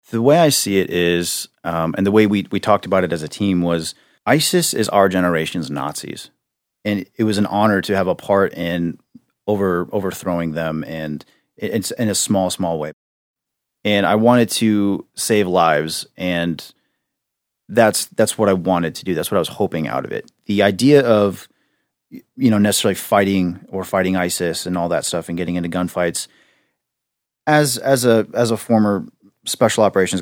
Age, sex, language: 30-49, male, English